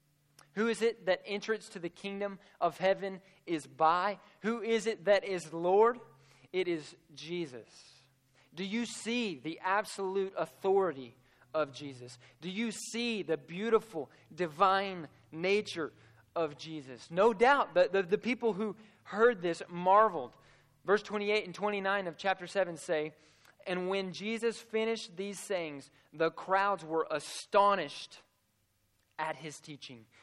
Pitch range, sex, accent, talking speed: 150-195 Hz, male, American, 135 wpm